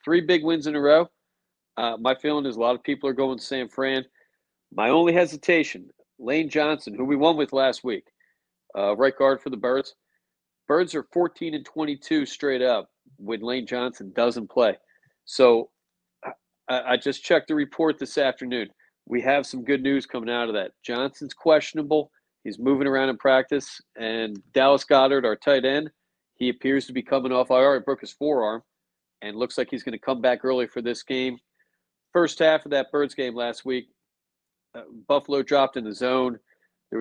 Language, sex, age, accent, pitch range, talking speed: English, male, 40-59, American, 120-140 Hz, 190 wpm